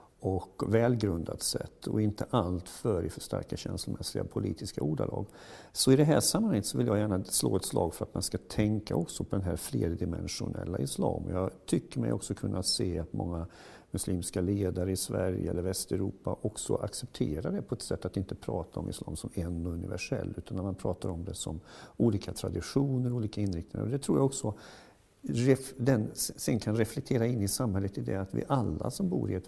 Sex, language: male, English